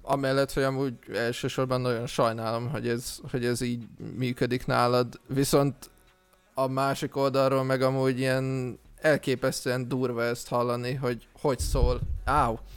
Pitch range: 115-135 Hz